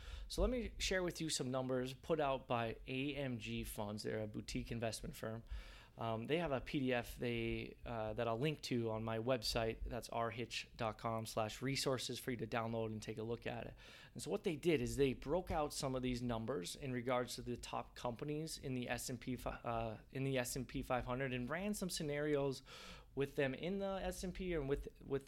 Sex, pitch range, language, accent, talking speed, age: male, 115-140 Hz, English, American, 200 wpm, 30-49